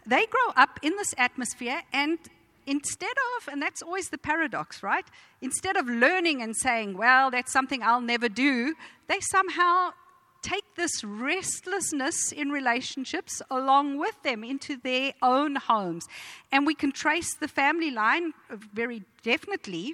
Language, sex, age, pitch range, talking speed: English, female, 50-69, 230-335 Hz, 145 wpm